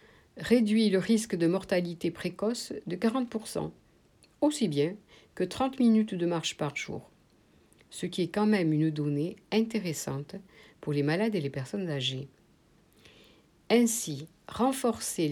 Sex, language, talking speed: female, French, 135 wpm